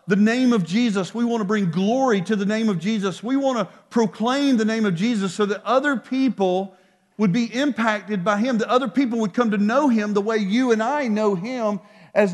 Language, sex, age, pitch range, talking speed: English, male, 40-59, 175-235 Hz, 230 wpm